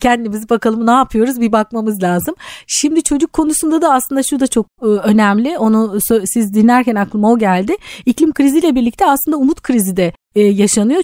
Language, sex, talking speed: Turkish, female, 165 wpm